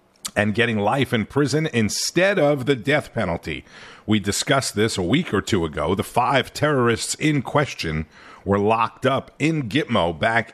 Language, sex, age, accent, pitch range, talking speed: English, male, 50-69, American, 100-130 Hz, 165 wpm